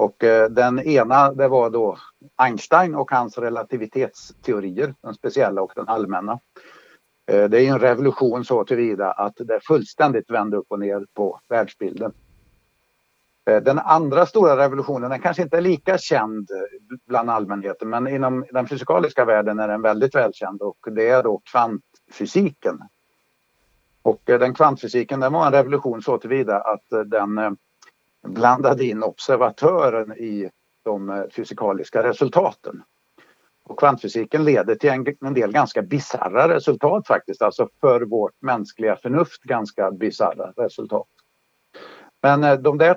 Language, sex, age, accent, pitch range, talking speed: Swedish, male, 50-69, native, 110-145 Hz, 130 wpm